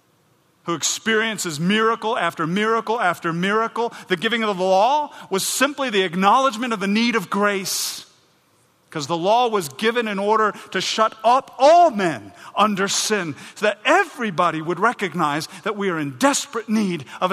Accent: American